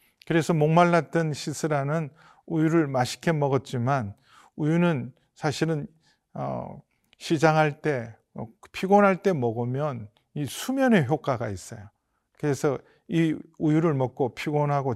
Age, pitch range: 40-59, 130-165 Hz